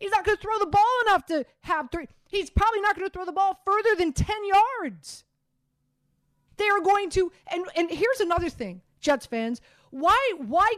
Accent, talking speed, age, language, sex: American, 200 wpm, 30-49, English, female